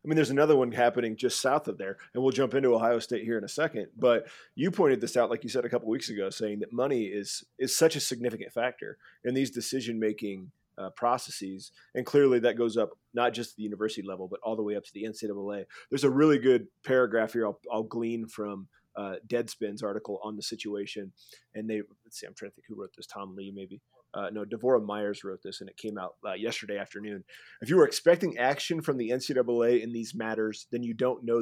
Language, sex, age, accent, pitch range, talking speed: English, male, 30-49, American, 105-125 Hz, 235 wpm